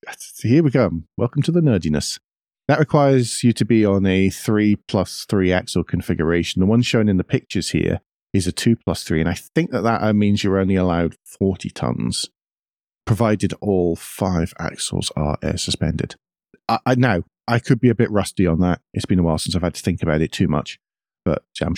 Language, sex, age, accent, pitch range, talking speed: English, male, 40-59, British, 90-115 Hz, 205 wpm